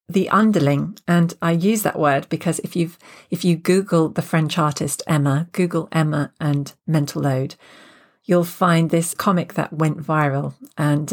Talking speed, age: 160 wpm, 40-59